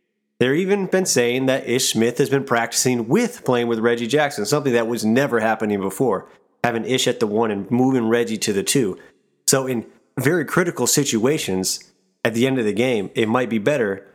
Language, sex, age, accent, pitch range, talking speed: English, male, 30-49, American, 105-135 Hz, 200 wpm